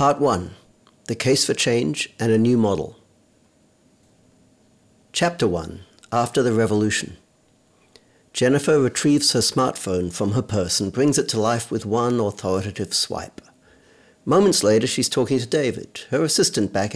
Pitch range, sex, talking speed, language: 105-140 Hz, male, 140 wpm, English